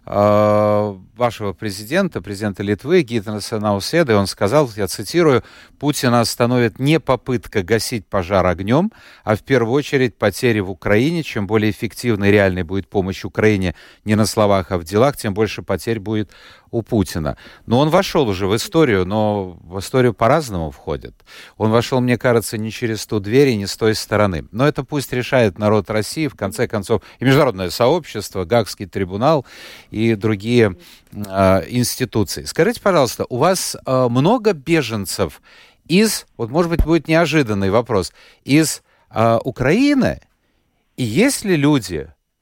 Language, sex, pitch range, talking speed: Russian, male, 105-135 Hz, 155 wpm